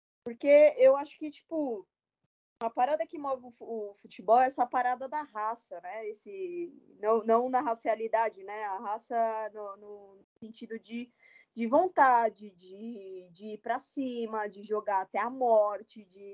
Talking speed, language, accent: 155 wpm, Portuguese, Brazilian